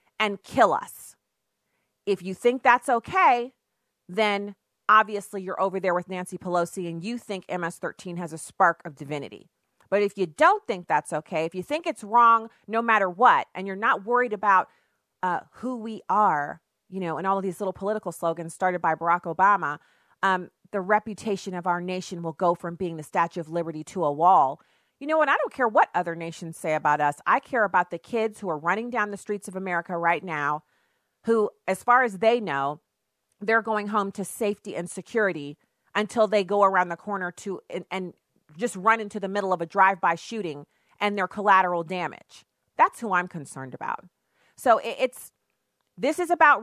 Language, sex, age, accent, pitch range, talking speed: English, female, 30-49, American, 175-220 Hz, 195 wpm